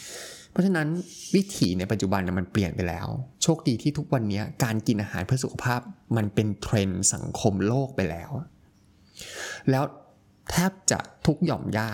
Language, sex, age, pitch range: Thai, male, 20-39, 100-130 Hz